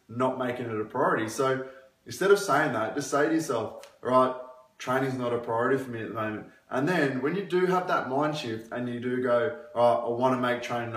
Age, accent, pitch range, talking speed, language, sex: 20-39, Australian, 120-145 Hz, 230 wpm, English, male